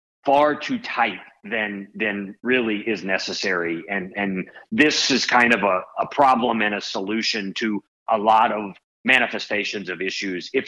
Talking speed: 155 wpm